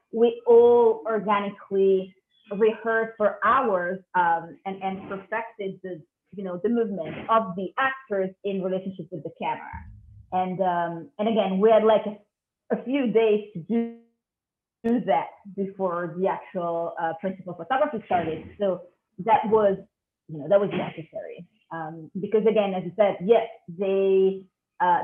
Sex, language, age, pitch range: female, English, 30-49, 185-220 Hz